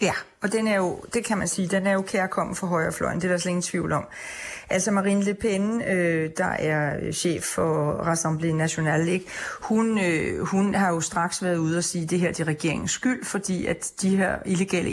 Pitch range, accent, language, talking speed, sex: 165-190 Hz, native, Danish, 205 wpm, female